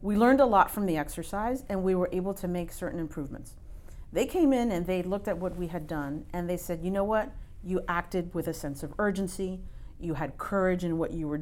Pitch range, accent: 165-200 Hz, American